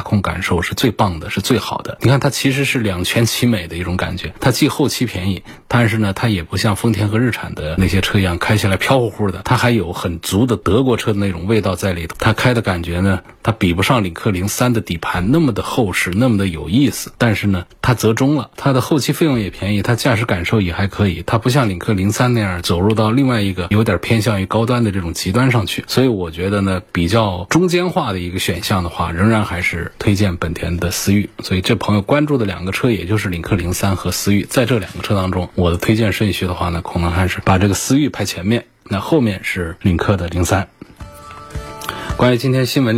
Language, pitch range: Chinese, 90-120 Hz